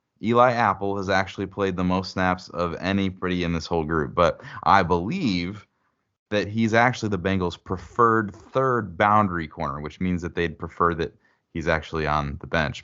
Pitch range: 85-110 Hz